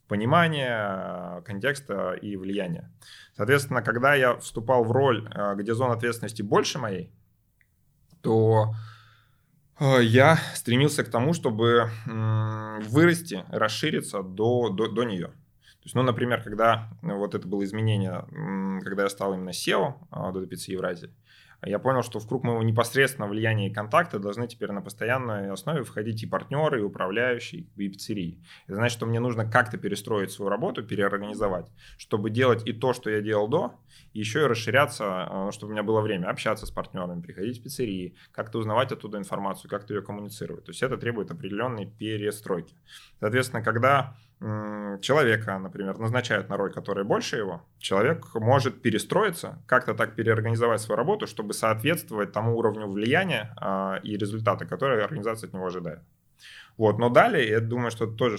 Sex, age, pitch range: male, 20-39, 100-120 Hz